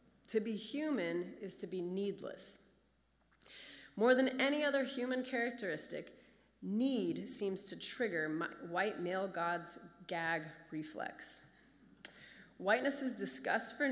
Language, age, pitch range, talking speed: English, 30-49, 170-215 Hz, 110 wpm